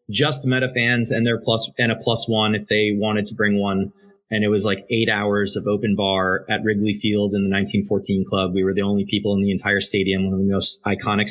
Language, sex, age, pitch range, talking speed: English, male, 30-49, 100-120 Hz, 245 wpm